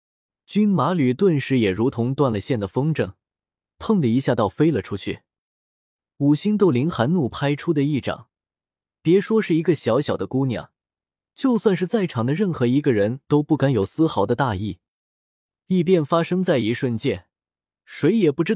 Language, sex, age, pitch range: Chinese, male, 20-39, 110-165 Hz